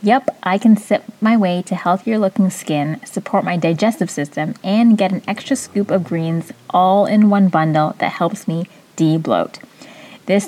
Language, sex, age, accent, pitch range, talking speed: English, female, 20-39, American, 165-210 Hz, 170 wpm